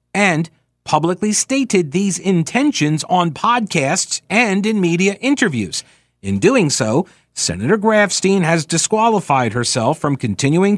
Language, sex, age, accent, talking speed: English, male, 50-69, American, 115 wpm